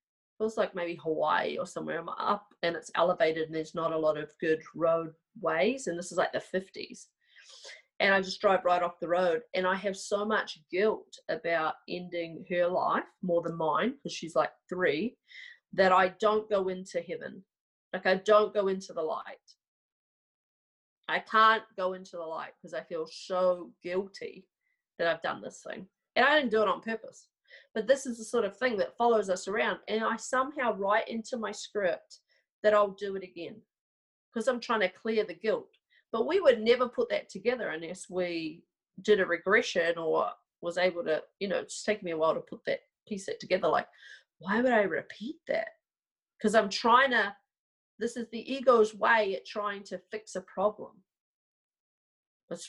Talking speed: 190 wpm